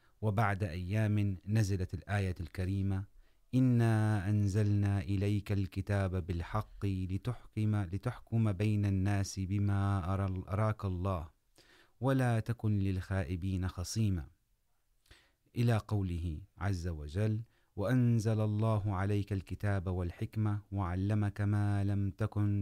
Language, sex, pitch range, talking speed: Urdu, male, 95-110 Hz, 90 wpm